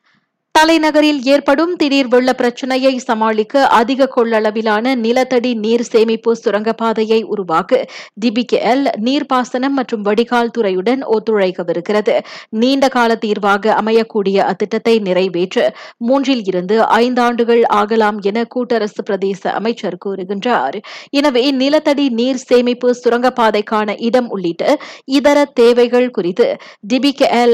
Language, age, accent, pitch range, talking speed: Tamil, 20-39, native, 210-260 Hz, 95 wpm